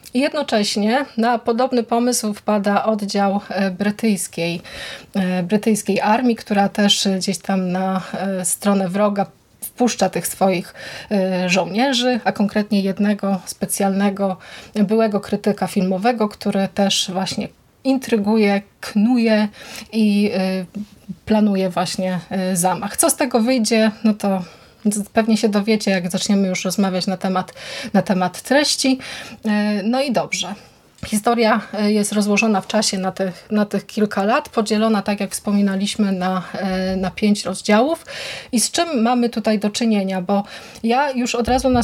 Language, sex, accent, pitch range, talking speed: Polish, female, native, 195-230 Hz, 125 wpm